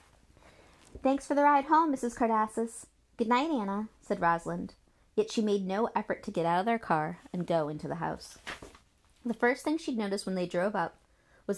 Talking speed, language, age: 195 wpm, English, 30-49